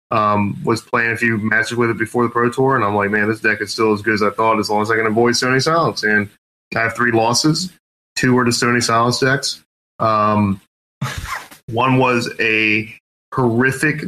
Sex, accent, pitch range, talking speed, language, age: male, American, 105-125 Hz, 205 wpm, English, 20-39